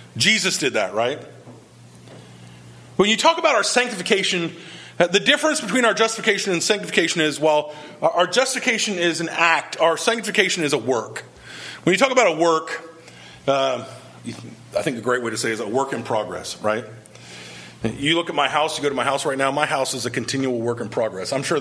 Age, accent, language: 30-49, American, English